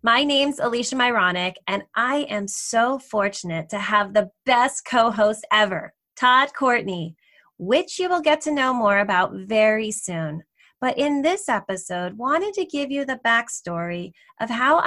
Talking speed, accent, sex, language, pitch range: 155 wpm, American, female, English, 195-275 Hz